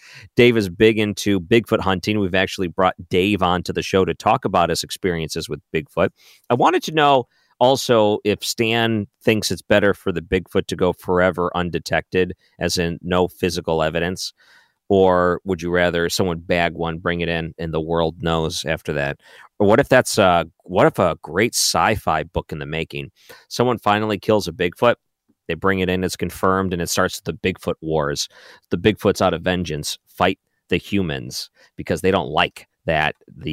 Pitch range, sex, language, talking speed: 85-110 Hz, male, English, 185 wpm